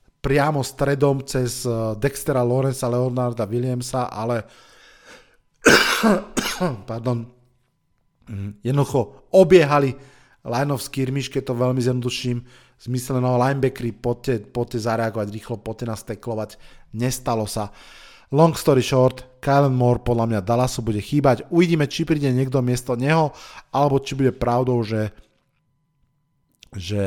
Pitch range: 115-135 Hz